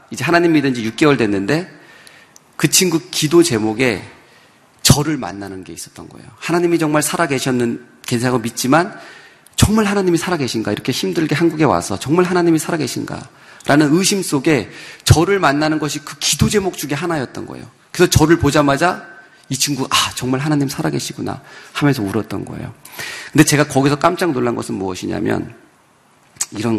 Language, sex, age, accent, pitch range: Korean, male, 40-59, native, 120-165 Hz